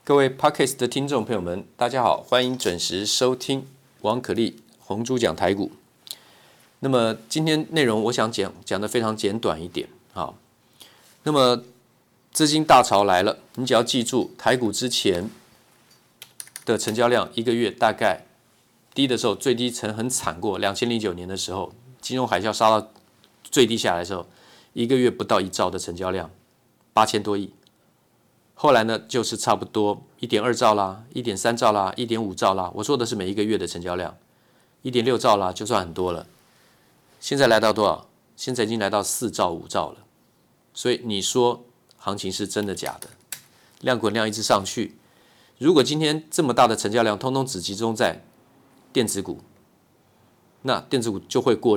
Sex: male